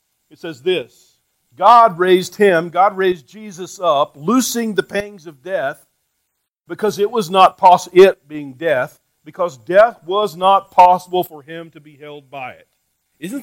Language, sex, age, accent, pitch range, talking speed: English, male, 50-69, American, 125-185 Hz, 160 wpm